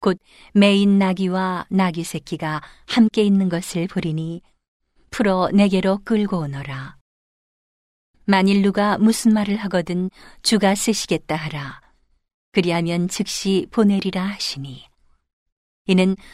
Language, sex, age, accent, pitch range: Korean, female, 40-59, native, 165-205 Hz